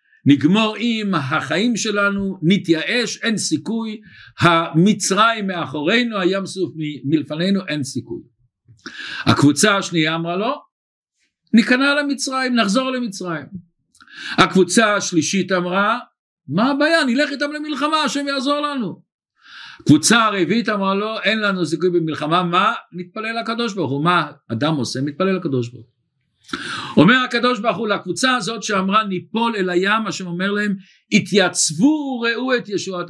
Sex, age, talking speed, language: male, 50-69, 125 wpm, Hebrew